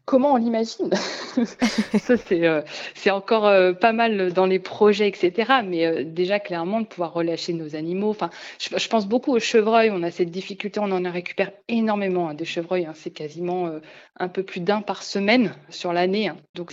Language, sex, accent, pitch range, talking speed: French, female, French, 170-210 Hz, 200 wpm